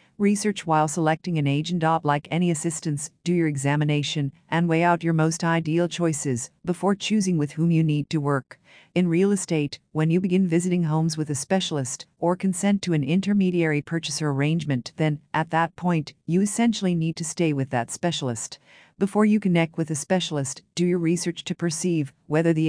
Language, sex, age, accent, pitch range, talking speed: English, female, 50-69, American, 150-180 Hz, 180 wpm